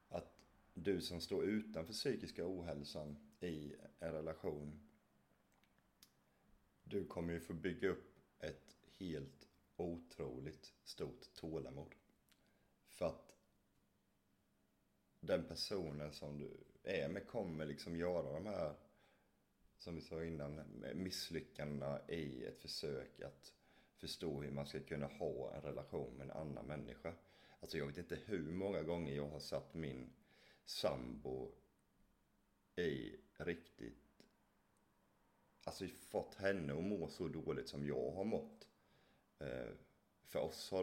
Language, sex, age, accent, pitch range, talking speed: Swedish, male, 30-49, native, 70-85 Hz, 120 wpm